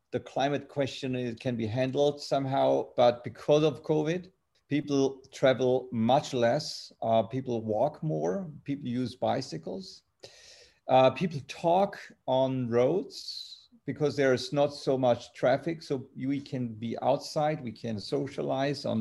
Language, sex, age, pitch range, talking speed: English, male, 50-69, 115-145 Hz, 135 wpm